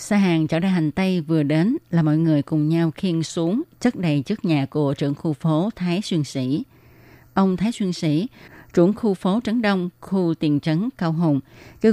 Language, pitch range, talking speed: Vietnamese, 155-195 Hz, 205 wpm